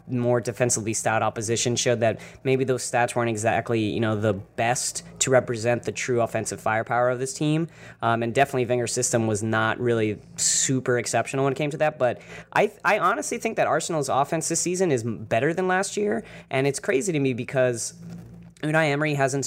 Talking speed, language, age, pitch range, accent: 195 wpm, English, 20-39, 115-140 Hz, American